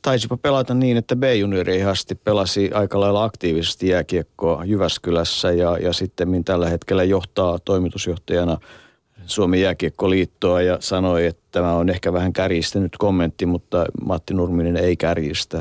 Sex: male